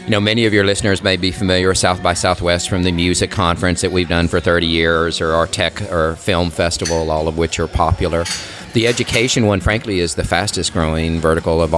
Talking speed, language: 225 wpm, English